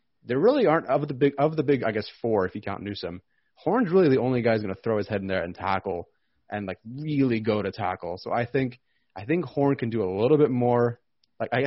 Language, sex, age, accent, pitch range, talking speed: English, male, 30-49, American, 105-125 Hz, 245 wpm